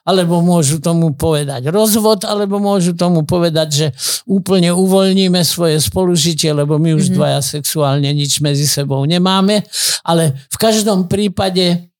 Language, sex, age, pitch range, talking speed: Slovak, male, 50-69, 160-195 Hz, 135 wpm